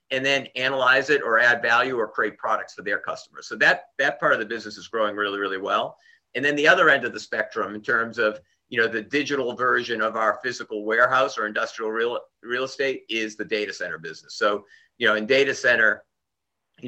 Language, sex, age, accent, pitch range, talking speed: English, male, 50-69, American, 115-140 Hz, 220 wpm